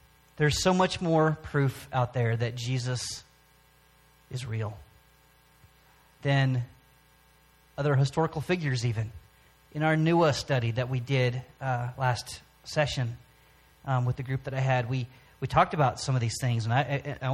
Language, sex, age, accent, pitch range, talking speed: English, male, 30-49, American, 125-155 Hz, 155 wpm